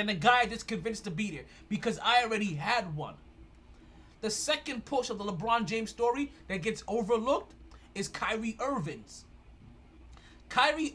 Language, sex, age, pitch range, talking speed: English, male, 20-39, 205-255 Hz, 155 wpm